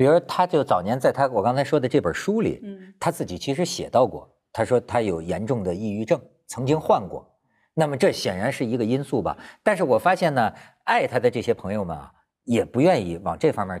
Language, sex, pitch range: Chinese, male, 115-180 Hz